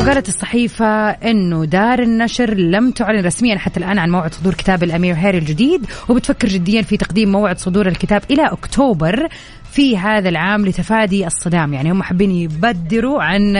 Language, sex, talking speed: Arabic, female, 160 wpm